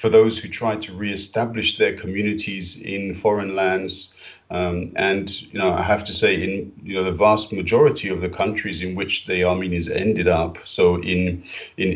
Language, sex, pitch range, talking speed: English, male, 95-110 Hz, 185 wpm